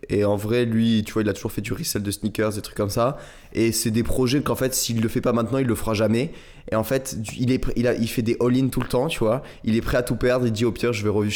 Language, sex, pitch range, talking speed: French, male, 110-130 Hz, 335 wpm